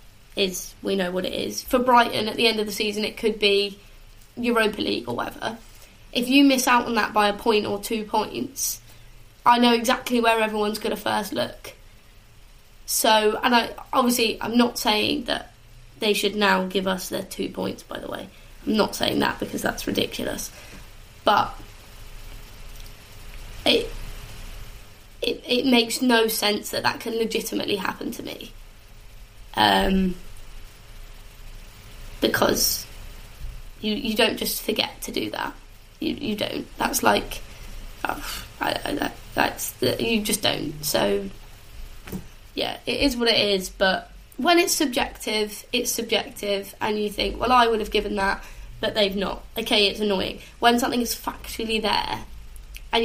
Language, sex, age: English, female, 20-39